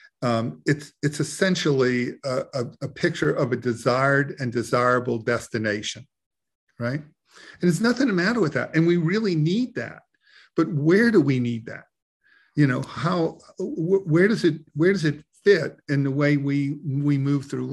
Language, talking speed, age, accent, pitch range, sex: English, 175 wpm, 50-69, American, 125-160 Hz, male